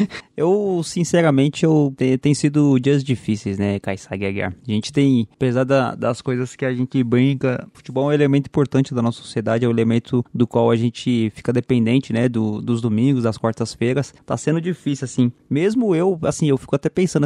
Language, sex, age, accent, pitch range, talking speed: Portuguese, male, 20-39, Brazilian, 120-145 Hz, 190 wpm